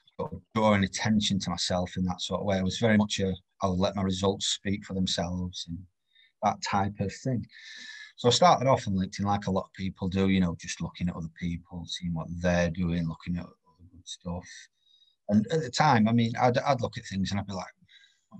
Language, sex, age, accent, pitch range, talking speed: English, male, 30-49, British, 90-105 Hz, 225 wpm